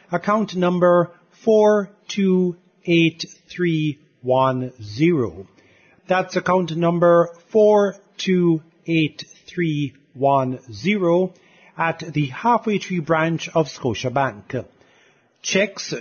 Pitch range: 150-195 Hz